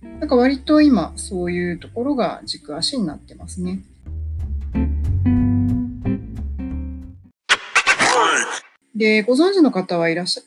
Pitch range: 165-255 Hz